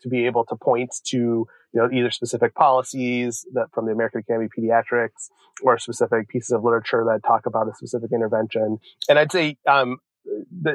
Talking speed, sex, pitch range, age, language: 190 wpm, male, 120-145 Hz, 30-49, English